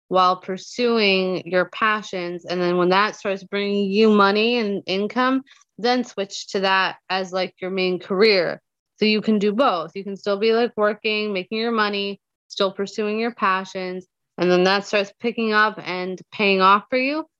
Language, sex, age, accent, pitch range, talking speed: English, female, 20-39, American, 180-210 Hz, 180 wpm